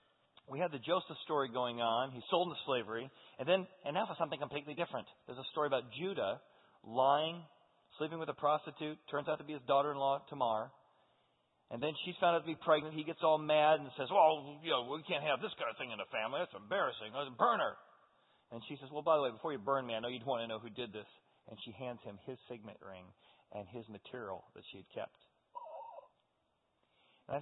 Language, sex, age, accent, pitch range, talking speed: English, male, 40-59, American, 115-150 Hz, 225 wpm